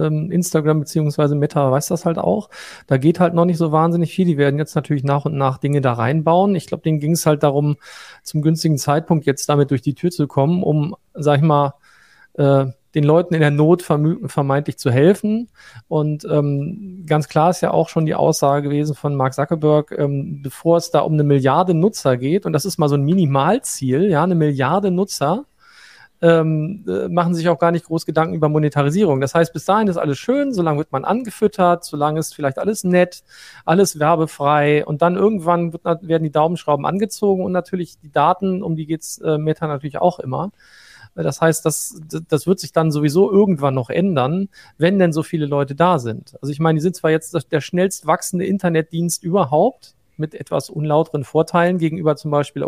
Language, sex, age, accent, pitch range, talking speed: German, male, 40-59, German, 145-175 Hz, 195 wpm